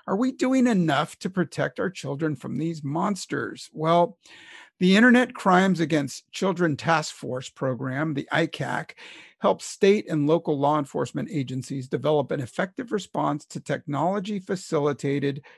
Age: 50-69